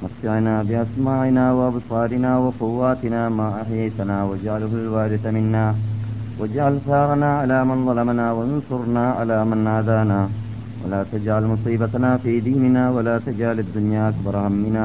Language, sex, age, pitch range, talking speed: Malayalam, male, 30-49, 110-125 Hz, 115 wpm